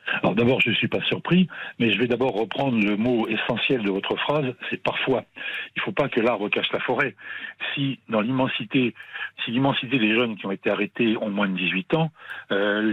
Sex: male